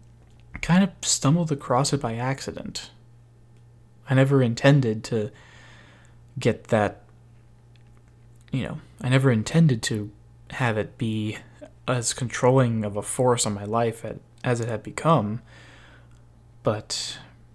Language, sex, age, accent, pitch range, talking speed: English, male, 20-39, American, 110-125 Hz, 120 wpm